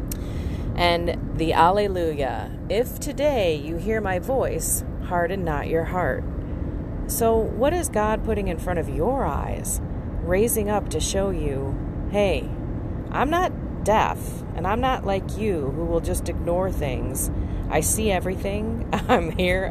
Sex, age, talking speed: female, 30-49, 145 wpm